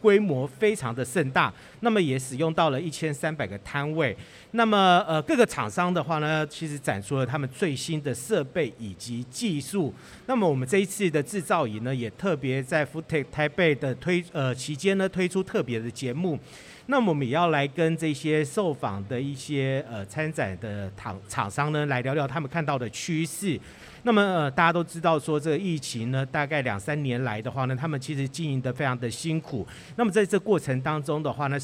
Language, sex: Chinese, male